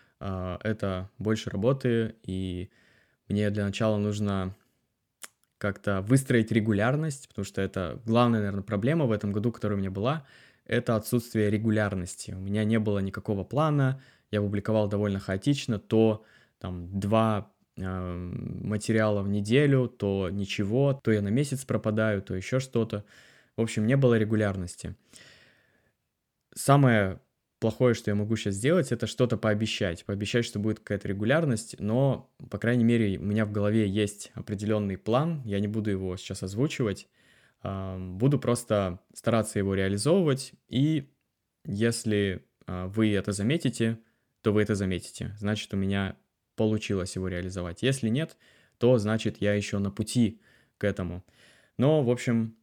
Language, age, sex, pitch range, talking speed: Russian, 20-39, male, 100-120 Hz, 140 wpm